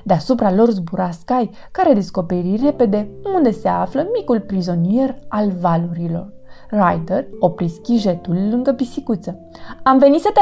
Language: Romanian